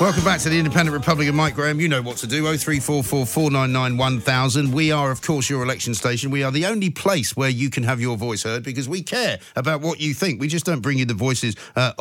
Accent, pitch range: British, 110-140 Hz